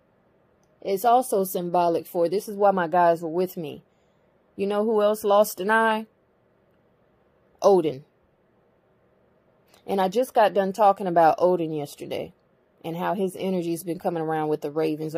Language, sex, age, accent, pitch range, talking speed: English, female, 20-39, American, 165-185 Hz, 160 wpm